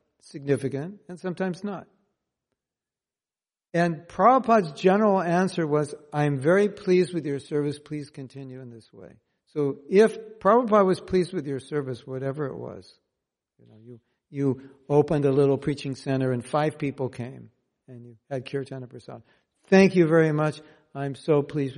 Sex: male